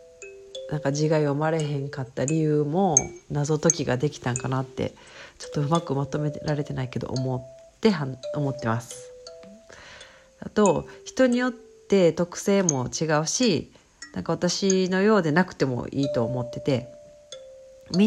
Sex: female